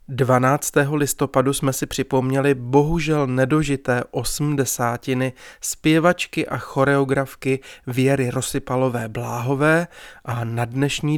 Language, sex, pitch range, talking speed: Czech, male, 125-145 Hz, 90 wpm